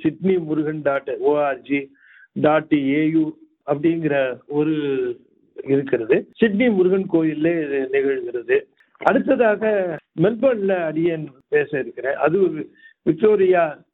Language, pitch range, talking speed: Tamil, 150-200 Hz, 70 wpm